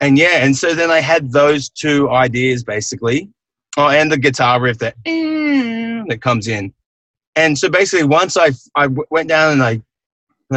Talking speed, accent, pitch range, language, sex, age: 185 wpm, Australian, 110-140 Hz, English, male, 20-39